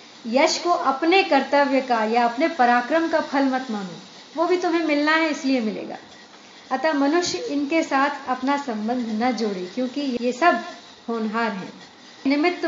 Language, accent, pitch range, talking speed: Hindi, native, 245-300 Hz, 155 wpm